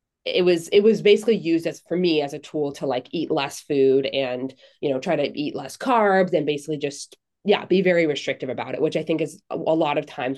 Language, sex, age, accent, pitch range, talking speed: English, female, 20-39, American, 140-180 Hz, 245 wpm